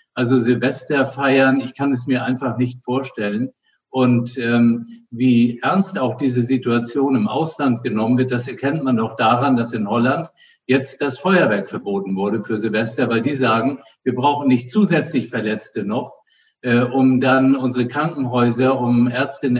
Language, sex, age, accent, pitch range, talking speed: German, male, 50-69, German, 125-140 Hz, 160 wpm